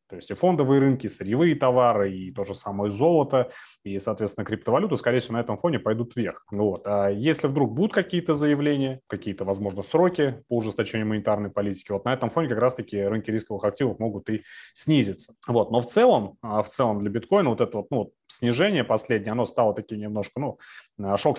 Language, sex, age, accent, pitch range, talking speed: Russian, male, 30-49, native, 100-125 Hz, 190 wpm